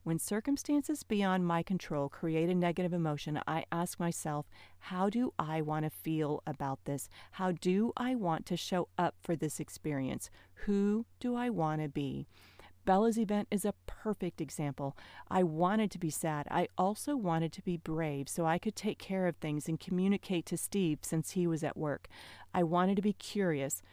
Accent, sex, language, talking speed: American, female, English, 185 wpm